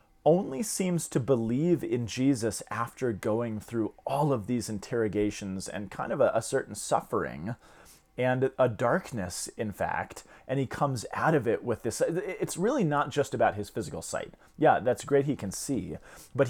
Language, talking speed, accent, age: English, 175 wpm, American, 30-49